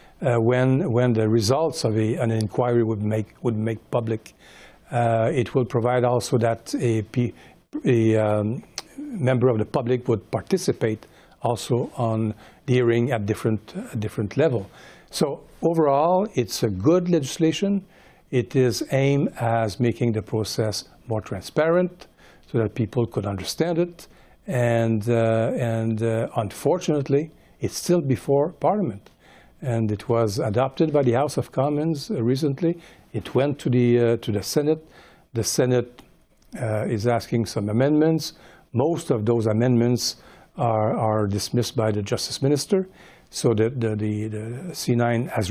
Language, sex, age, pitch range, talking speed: English, male, 60-79, 115-140 Hz, 145 wpm